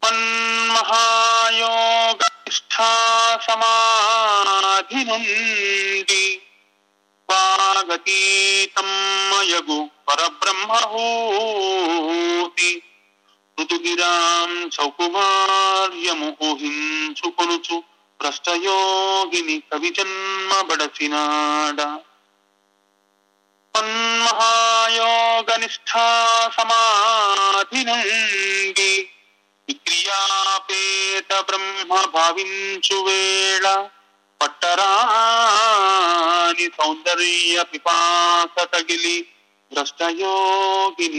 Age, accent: 40-59, native